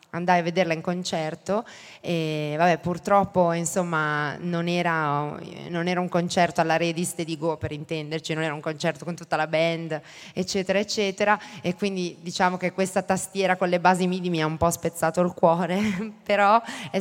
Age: 20-39